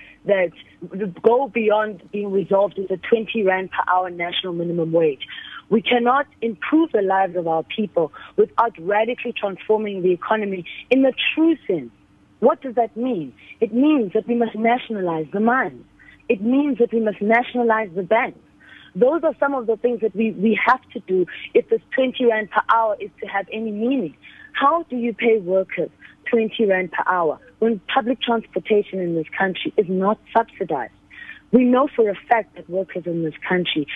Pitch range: 190-245 Hz